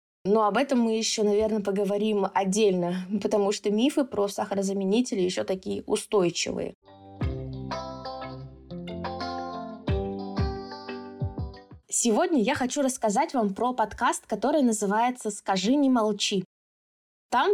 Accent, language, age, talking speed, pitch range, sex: native, Russian, 20-39, 100 wpm, 180-235 Hz, female